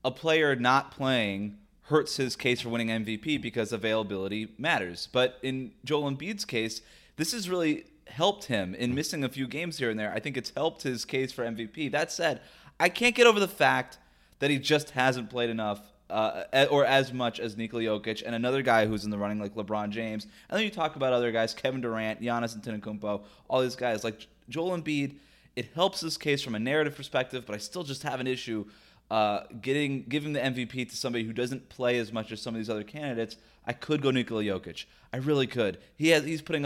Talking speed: 215 wpm